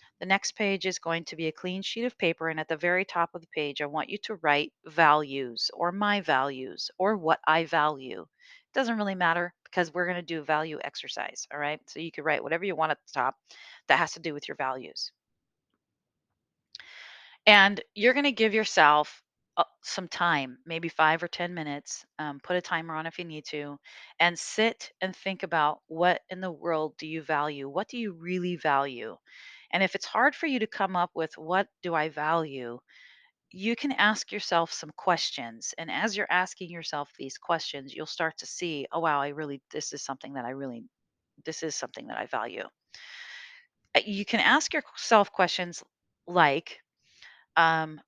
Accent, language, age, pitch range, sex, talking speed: American, English, 40-59, 155-195 Hz, female, 195 wpm